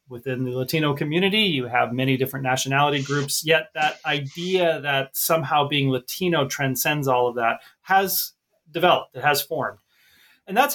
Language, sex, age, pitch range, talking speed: English, male, 30-49, 125-160 Hz, 155 wpm